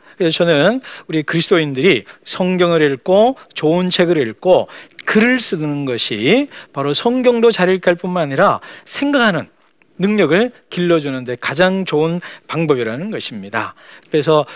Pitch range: 140-195 Hz